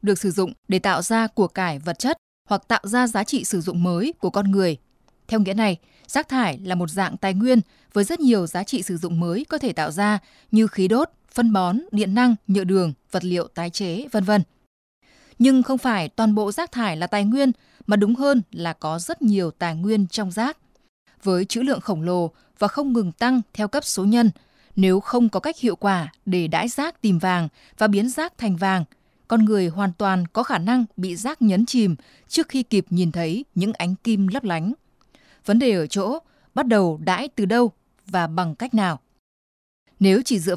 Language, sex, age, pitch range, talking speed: Vietnamese, female, 20-39, 180-235 Hz, 215 wpm